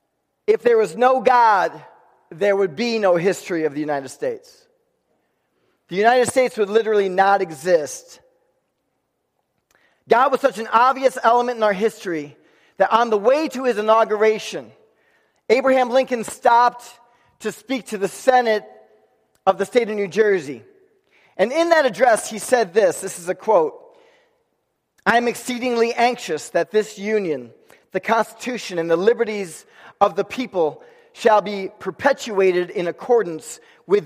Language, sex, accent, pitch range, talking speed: English, male, American, 190-250 Hz, 145 wpm